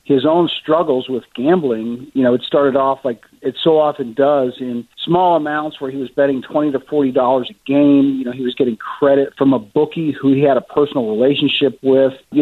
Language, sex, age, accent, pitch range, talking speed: English, male, 50-69, American, 130-145 Hz, 215 wpm